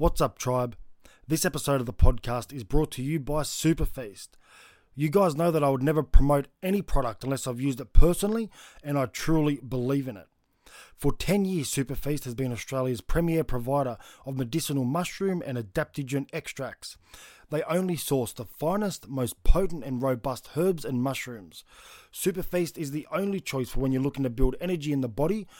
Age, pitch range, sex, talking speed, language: 20-39, 130-165 Hz, male, 180 wpm, English